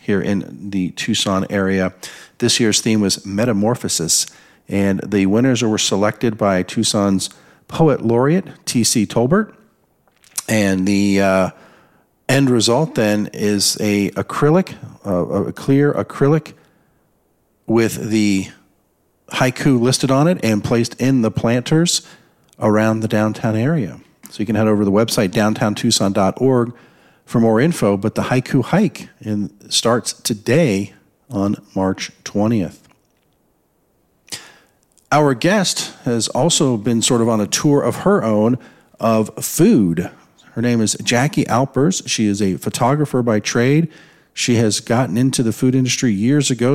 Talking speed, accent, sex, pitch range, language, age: 135 wpm, American, male, 105-140 Hz, English, 40-59